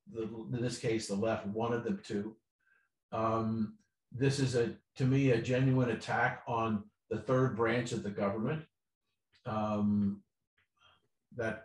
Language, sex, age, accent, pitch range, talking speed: English, male, 50-69, American, 110-125 Hz, 140 wpm